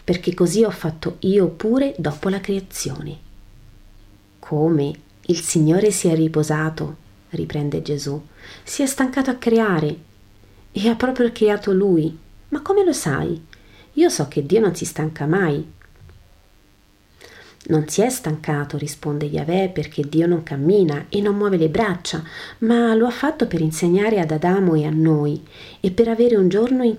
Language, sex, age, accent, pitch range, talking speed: Italian, female, 40-59, native, 145-195 Hz, 160 wpm